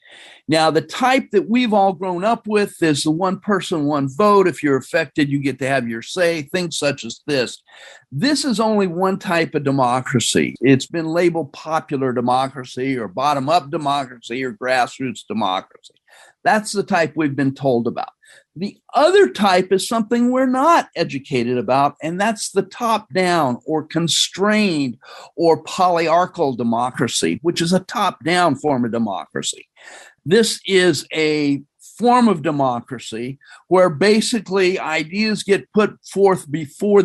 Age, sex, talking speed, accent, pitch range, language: 50-69, male, 145 wpm, American, 140-195 Hz, English